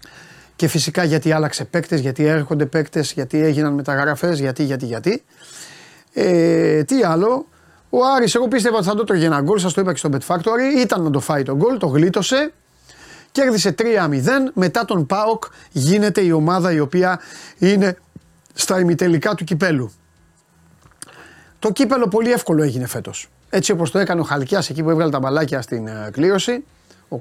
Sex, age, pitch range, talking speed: male, 30-49, 150-220 Hz, 165 wpm